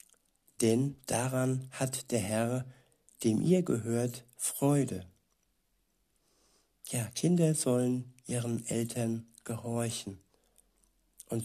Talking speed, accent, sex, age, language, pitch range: 85 wpm, German, male, 60-79, German, 115-130 Hz